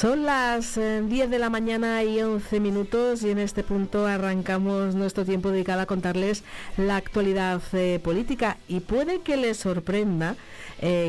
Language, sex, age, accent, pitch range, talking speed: Spanish, female, 50-69, Spanish, 165-195 Hz, 160 wpm